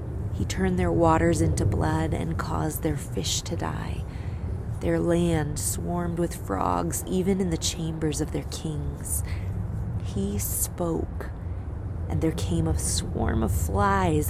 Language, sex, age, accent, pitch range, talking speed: English, female, 20-39, American, 80-100 Hz, 140 wpm